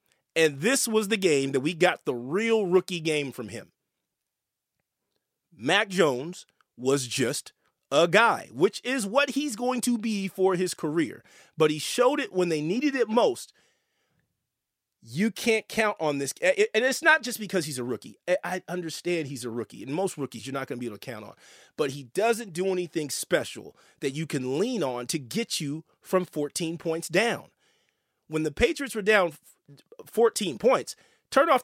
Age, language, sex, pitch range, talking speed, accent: 40-59, English, male, 160-245 Hz, 180 wpm, American